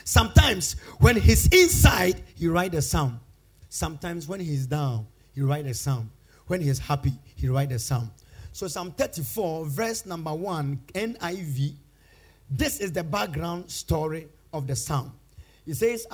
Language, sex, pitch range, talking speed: English, male, 135-210 Hz, 150 wpm